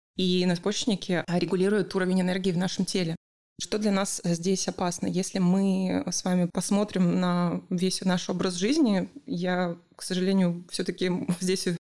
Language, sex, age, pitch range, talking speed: Russian, female, 20-39, 175-200 Hz, 145 wpm